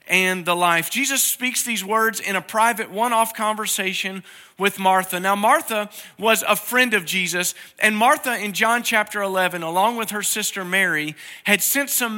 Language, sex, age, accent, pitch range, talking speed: English, male, 40-59, American, 170-220 Hz, 170 wpm